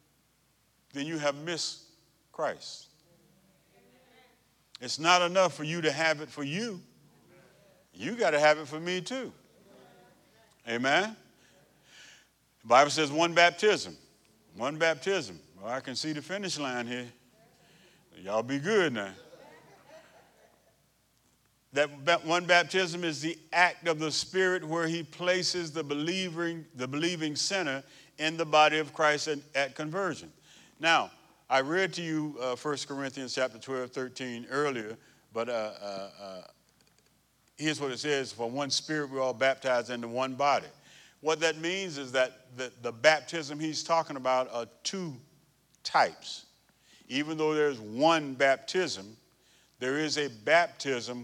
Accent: American